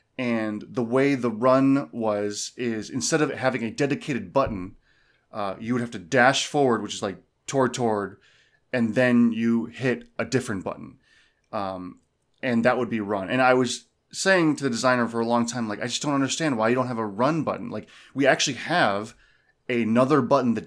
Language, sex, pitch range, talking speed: English, male, 115-135 Hz, 195 wpm